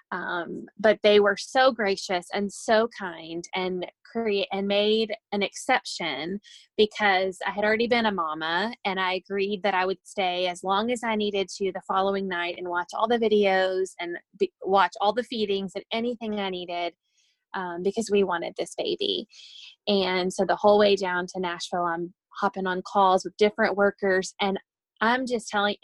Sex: female